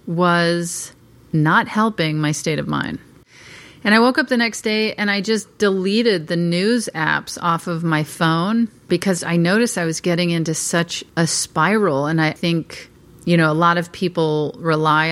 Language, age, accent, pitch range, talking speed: English, 40-59, American, 155-180 Hz, 180 wpm